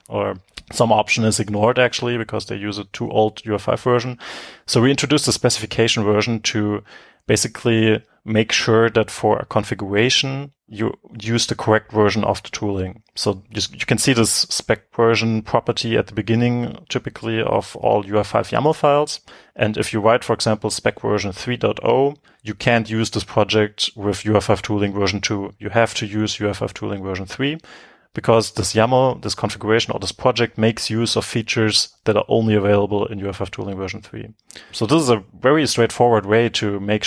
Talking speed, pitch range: 180 wpm, 105-120 Hz